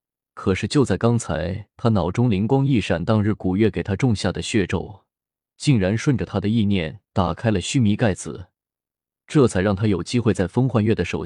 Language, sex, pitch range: Chinese, male, 95-115 Hz